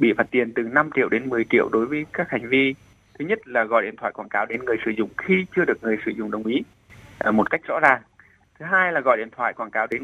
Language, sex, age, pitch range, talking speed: Vietnamese, male, 20-39, 115-155 Hz, 280 wpm